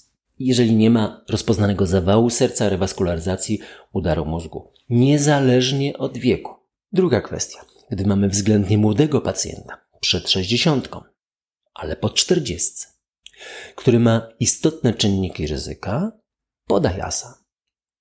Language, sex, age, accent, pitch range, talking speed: Polish, male, 40-59, native, 95-140 Hz, 100 wpm